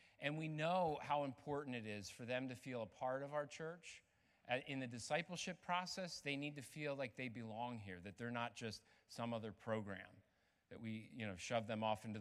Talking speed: 210 wpm